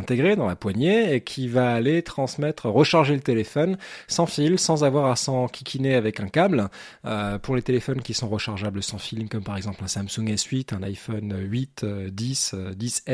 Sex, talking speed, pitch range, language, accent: male, 185 wpm, 105-135 Hz, French, French